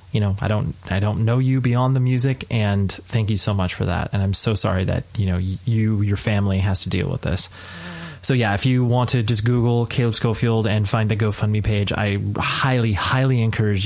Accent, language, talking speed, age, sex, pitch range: American, English, 225 wpm, 20-39, male, 95-125 Hz